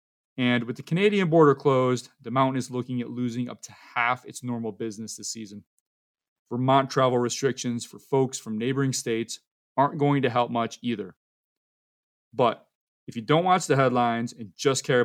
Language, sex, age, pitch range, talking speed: English, male, 30-49, 115-145 Hz, 175 wpm